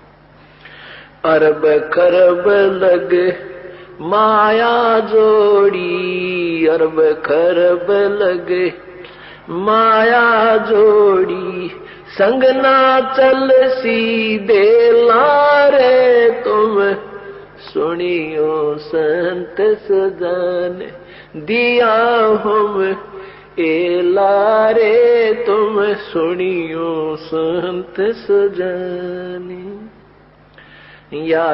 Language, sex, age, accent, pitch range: English, male, 50-69, Indian, 180-235 Hz